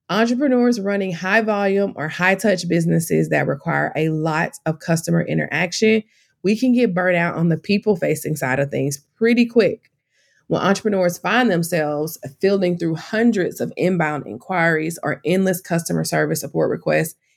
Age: 20-39